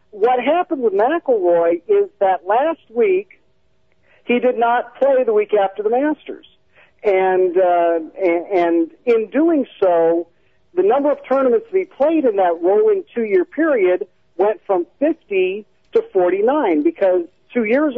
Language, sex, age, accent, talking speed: English, male, 50-69, American, 145 wpm